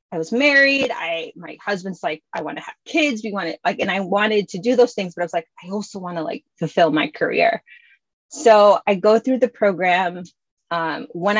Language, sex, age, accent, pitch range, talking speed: English, female, 20-39, American, 170-220 Hz, 225 wpm